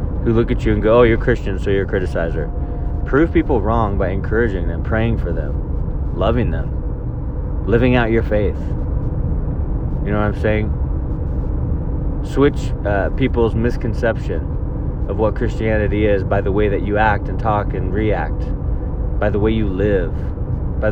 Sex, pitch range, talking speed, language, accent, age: male, 90-120 Hz, 165 wpm, English, American, 30-49